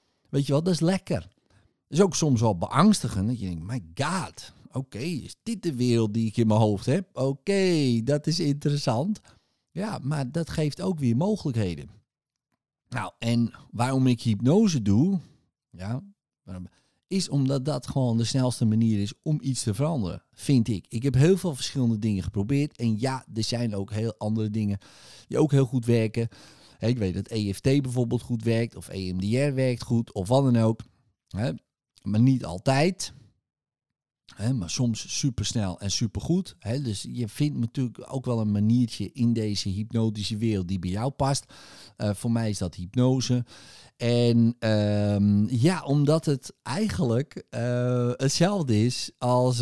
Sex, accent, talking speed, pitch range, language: male, Dutch, 175 wpm, 110-140 Hz, Dutch